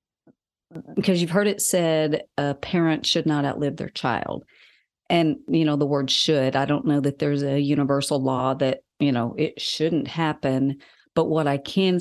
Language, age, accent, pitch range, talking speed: English, 40-59, American, 140-170 Hz, 185 wpm